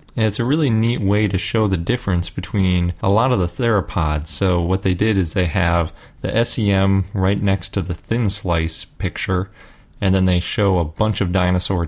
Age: 30-49